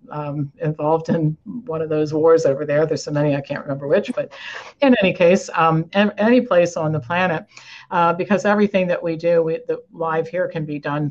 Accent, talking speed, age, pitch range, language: American, 205 wpm, 50-69, 150-170 Hz, English